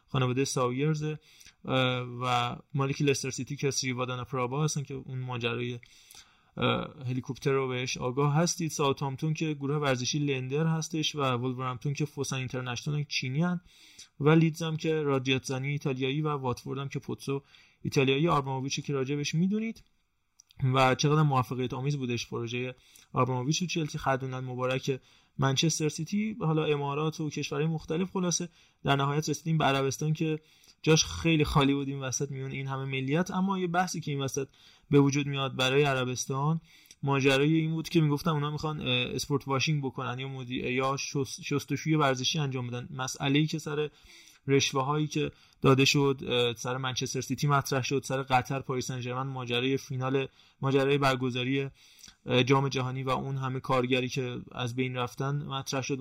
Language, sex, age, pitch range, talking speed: Persian, male, 20-39, 130-150 Hz, 155 wpm